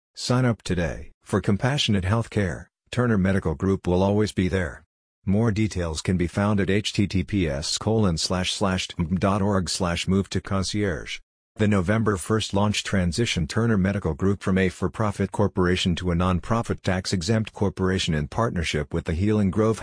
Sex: male